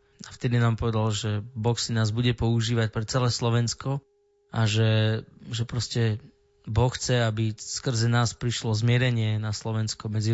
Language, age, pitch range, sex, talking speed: Slovak, 20-39, 110-130 Hz, male, 155 wpm